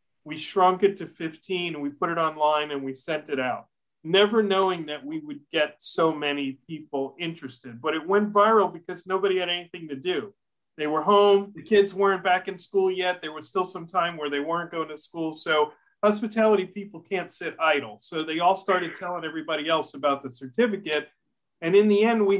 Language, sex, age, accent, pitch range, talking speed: English, male, 40-59, American, 150-195 Hz, 205 wpm